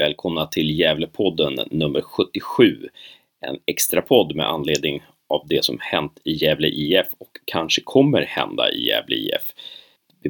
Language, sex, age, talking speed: Swedish, male, 30-49, 145 wpm